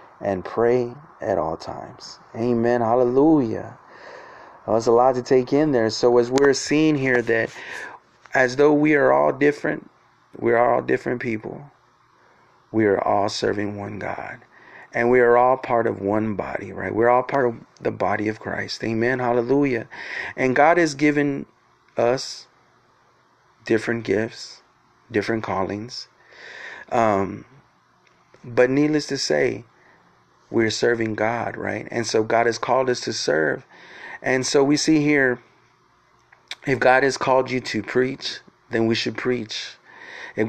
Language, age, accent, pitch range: English, 30-49, American, 115-140 Hz